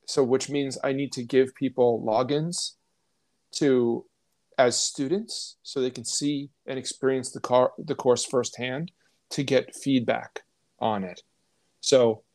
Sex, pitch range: male, 120-145 Hz